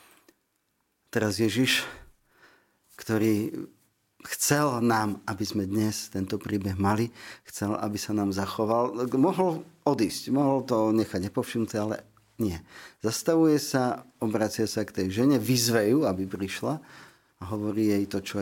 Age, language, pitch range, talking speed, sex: 40-59, Slovak, 105-130 Hz, 130 wpm, male